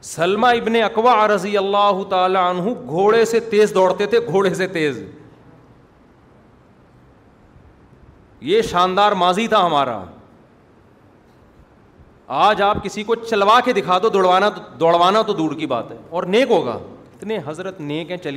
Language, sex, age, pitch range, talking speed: Urdu, male, 40-59, 140-205 Hz, 140 wpm